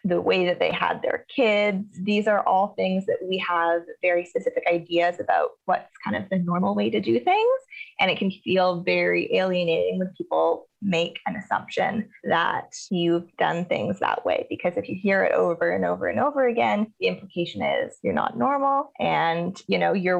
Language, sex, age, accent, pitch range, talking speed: English, female, 20-39, American, 175-225 Hz, 195 wpm